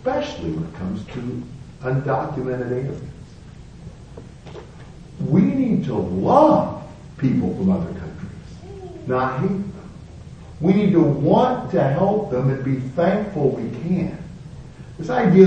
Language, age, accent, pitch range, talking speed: English, 50-69, American, 105-165 Hz, 125 wpm